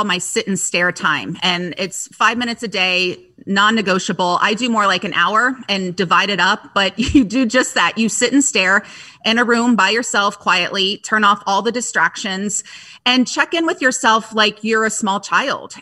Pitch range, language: 195-245 Hz, English